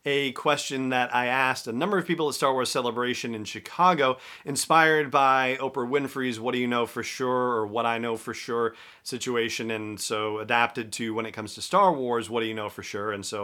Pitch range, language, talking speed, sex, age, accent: 115-145 Hz, English, 225 wpm, male, 40-59, American